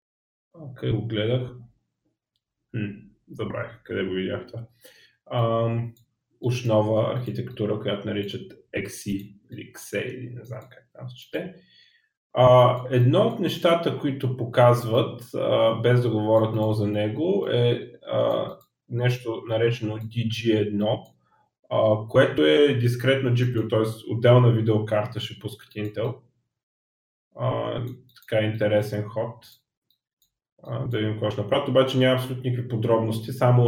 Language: Bulgarian